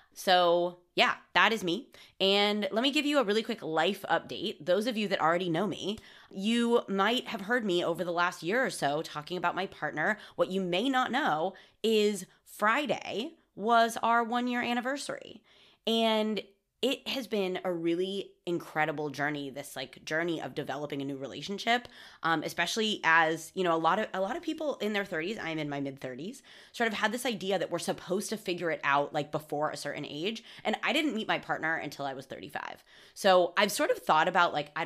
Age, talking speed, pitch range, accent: 20-39, 205 wpm, 155-215 Hz, American